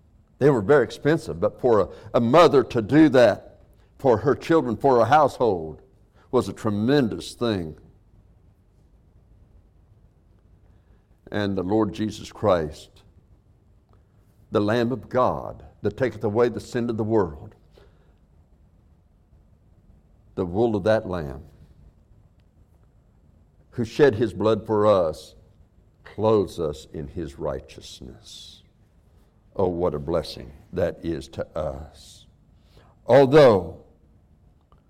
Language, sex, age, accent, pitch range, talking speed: English, male, 60-79, American, 85-110 Hz, 110 wpm